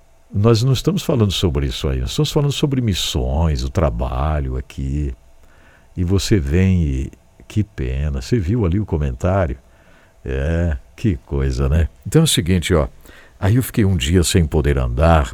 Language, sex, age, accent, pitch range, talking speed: English, male, 60-79, Brazilian, 70-105 Hz, 170 wpm